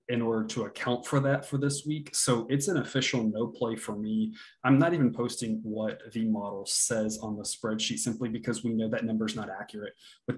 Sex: male